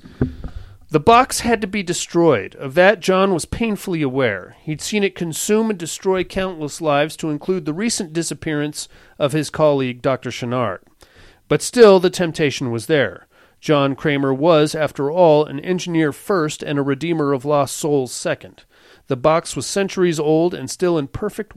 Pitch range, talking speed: 140-170 Hz, 165 wpm